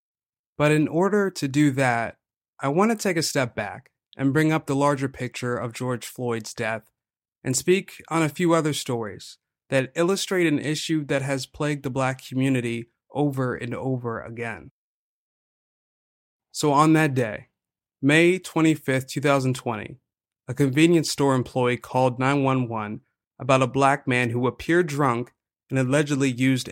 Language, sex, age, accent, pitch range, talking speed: English, male, 30-49, American, 125-150 Hz, 150 wpm